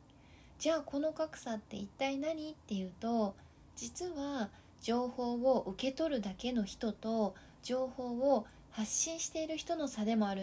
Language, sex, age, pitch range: Japanese, female, 20-39, 220-280 Hz